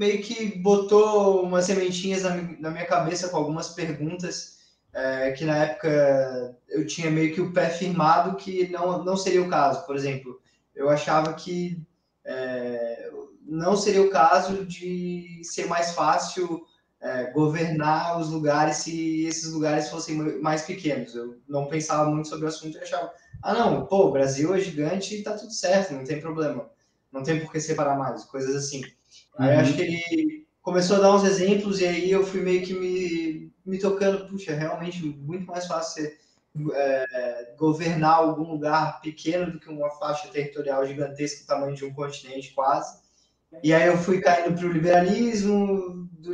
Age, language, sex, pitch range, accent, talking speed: 20-39, Portuguese, male, 150-185 Hz, Brazilian, 175 wpm